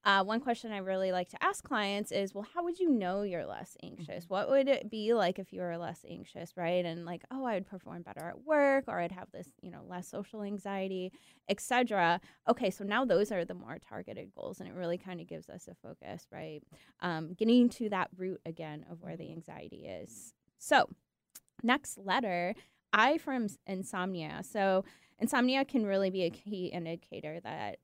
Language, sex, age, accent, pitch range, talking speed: English, female, 20-39, American, 175-220 Hz, 205 wpm